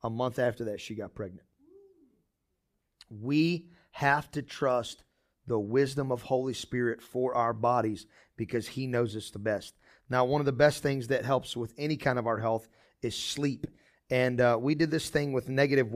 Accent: American